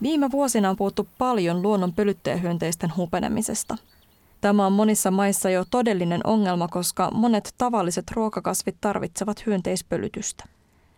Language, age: Finnish, 20-39